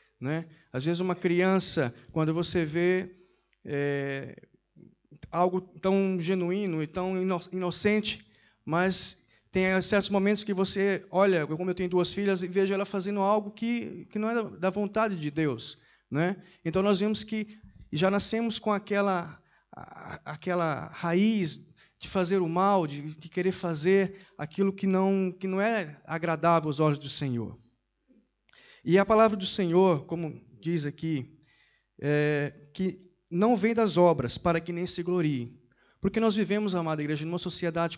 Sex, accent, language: male, Brazilian, Portuguese